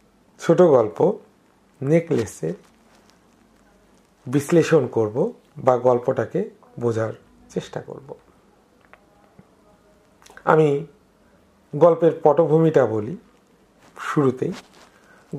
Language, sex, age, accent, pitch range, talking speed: Bengali, male, 50-69, native, 140-190 Hz, 50 wpm